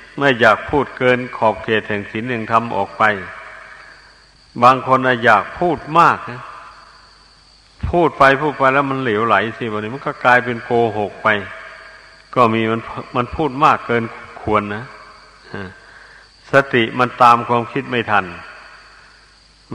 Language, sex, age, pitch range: Thai, male, 60-79, 110-130 Hz